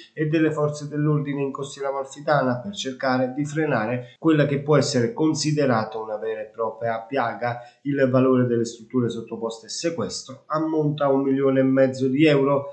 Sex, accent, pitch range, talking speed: male, native, 120-150 Hz, 170 wpm